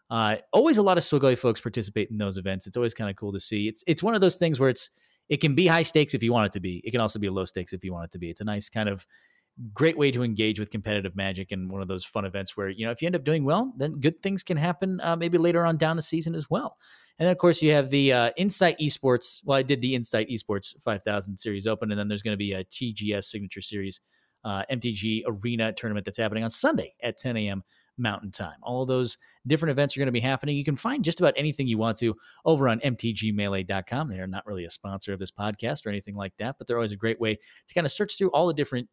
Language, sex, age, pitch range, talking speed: English, male, 30-49, 105-150 Hz, 275 wpm